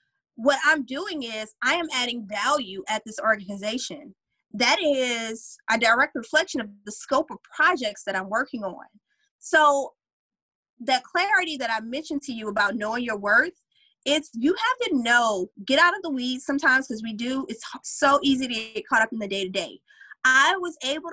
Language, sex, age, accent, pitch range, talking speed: English, female, 20-39, American, 225-310 Hz, 180 wpm